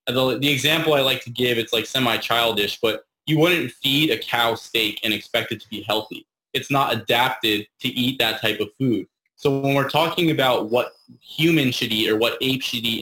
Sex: male